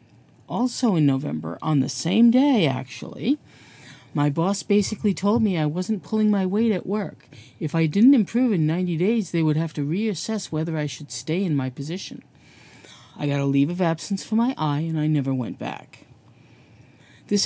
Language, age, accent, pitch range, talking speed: English, 50-69, American, 135-205 Hz, 185 wpm